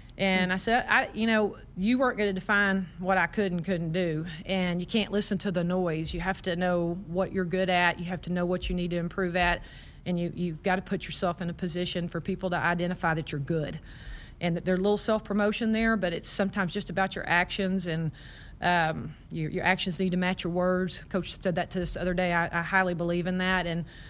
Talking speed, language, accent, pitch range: 245 wpm, English, American, 175-195 Hz